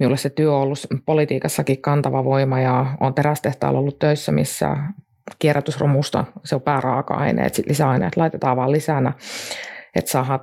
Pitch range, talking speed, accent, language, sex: 135-155 Hz, 140 wpm, native, Finnish, female